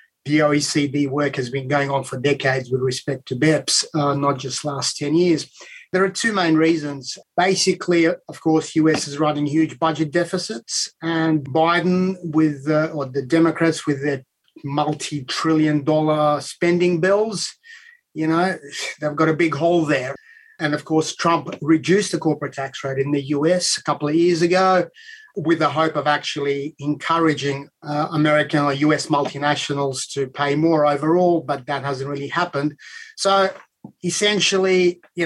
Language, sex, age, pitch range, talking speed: English, male, 30-49, 145-175 Hz, 160 wpm